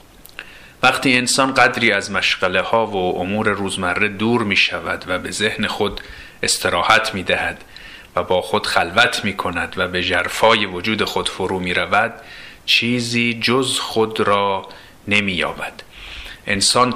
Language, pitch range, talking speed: Persian, 95-120 Hz, 140 wpm